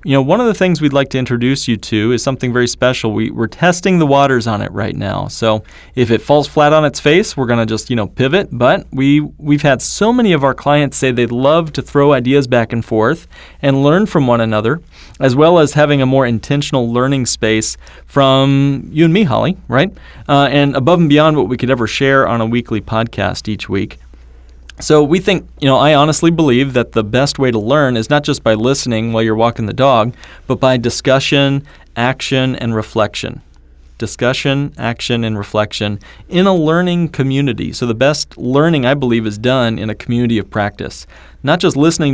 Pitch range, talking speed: 115-140 Hz, 210 wpm